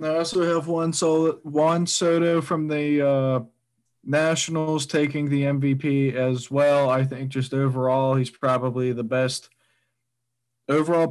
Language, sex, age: English, male, 20-39